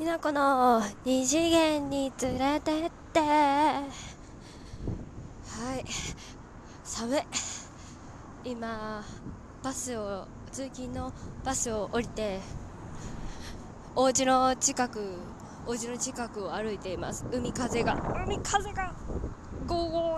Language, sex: Japanese, female